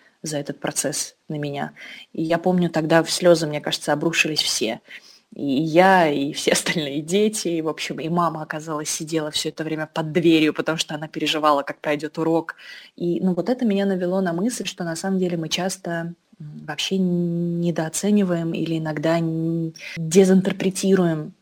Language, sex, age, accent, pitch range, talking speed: Russian, female, 20-39, native, 150-175 Hz, 165 wpm